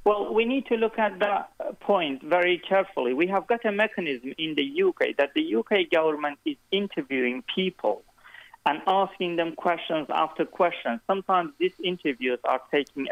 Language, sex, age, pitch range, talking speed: English, male, 40-59, 145-195 Hz, 165 wpm